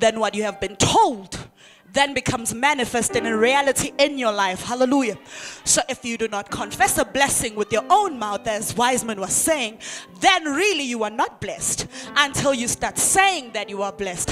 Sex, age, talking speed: female, 20-39, 185 wpm